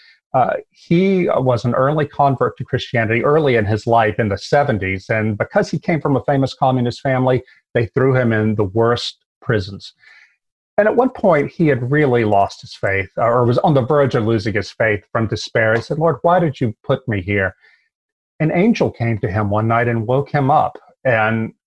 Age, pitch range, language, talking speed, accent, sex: 40-59, 115-145 Hz, English, 200 wpm, American, male